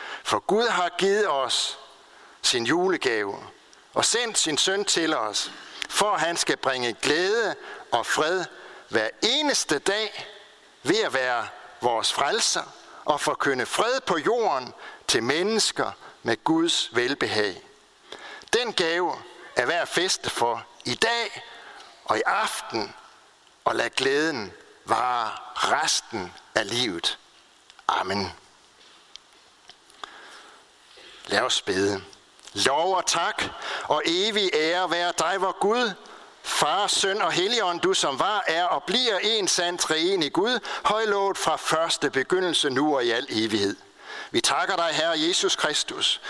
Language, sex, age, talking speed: Danish, male, 60-79, 130 wpm